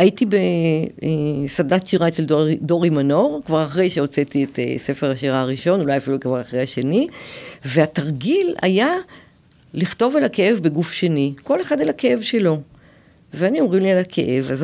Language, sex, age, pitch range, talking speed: Hebrew, female, 50-69, 150-200 Hz, 150 wpm